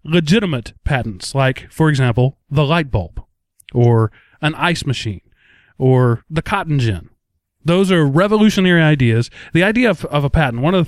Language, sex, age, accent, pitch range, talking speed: English, male, 30-49, American, 115-155 Hz, 160 wpm